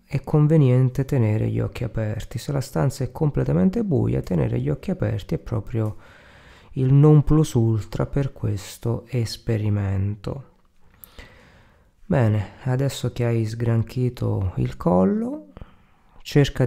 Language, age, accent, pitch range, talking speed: Italian, 30-49, native, 105-135 Hz, 115 wpm